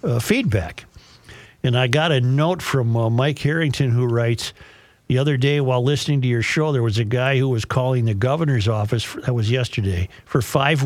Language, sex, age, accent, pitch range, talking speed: English, male, 50-69, American, 125-150 Hz, 205 wpm